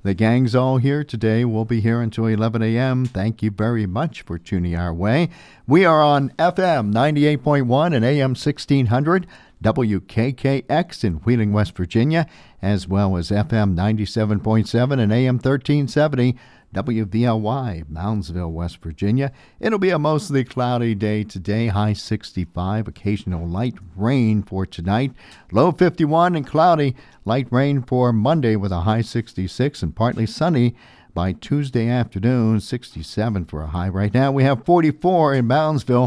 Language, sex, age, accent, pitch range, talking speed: English, male, 50-69, American, 105-140 Hz, 140 wpm